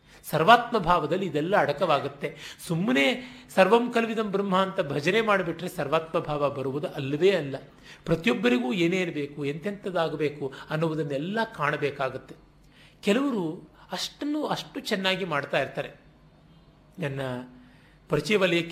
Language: Kannada